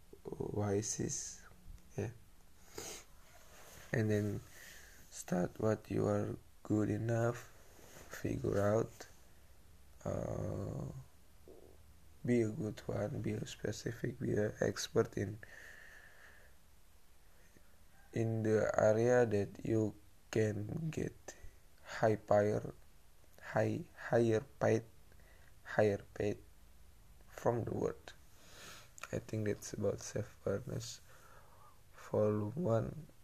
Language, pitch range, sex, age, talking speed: English, 95-115 Hz, male, 20-39, 85 wpm